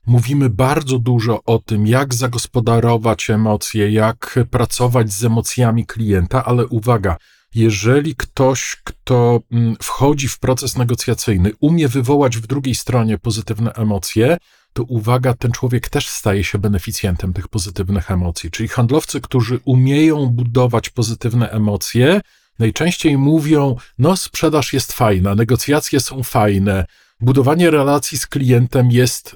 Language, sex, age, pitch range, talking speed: Polish, male, 40-59, 110-135 Hz, 125 wpm